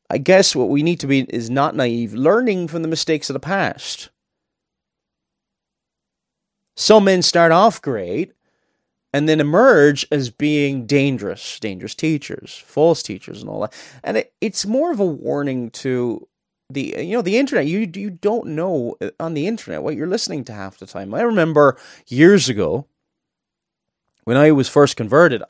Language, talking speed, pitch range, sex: English, 165 wpm, 120-170 Hz, male